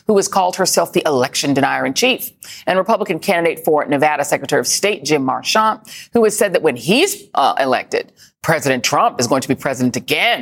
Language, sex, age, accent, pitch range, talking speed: English, female, 40-59, American, 155-220 Hz, 200 wpm